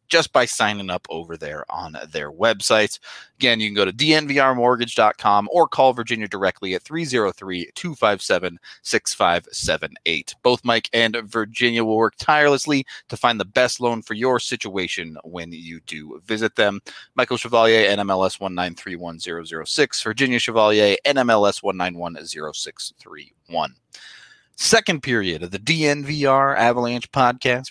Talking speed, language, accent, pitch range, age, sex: 120 wpm, English, American, 100-150 Hz, 30-49, male